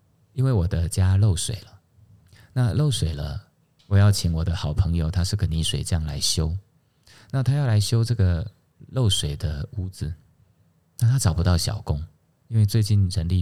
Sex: male